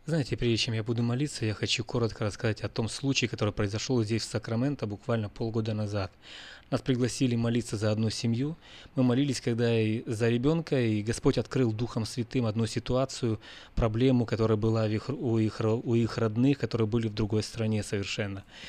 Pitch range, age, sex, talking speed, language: 110-140 Hz, 20-39, male, 170 wpm, Russian